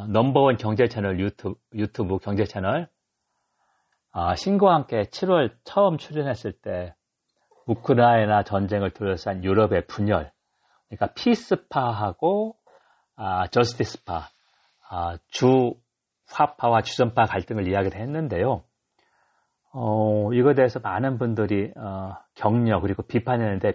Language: Korean